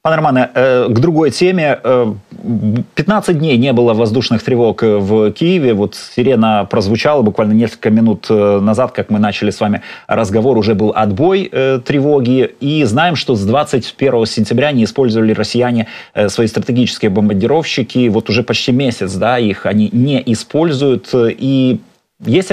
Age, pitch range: 30-49, 110-135 Hz